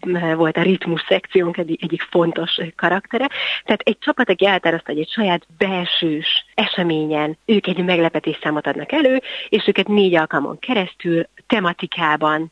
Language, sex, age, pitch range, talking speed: Hungarian, female, 30-49, 160-195 Hz, 150 wpm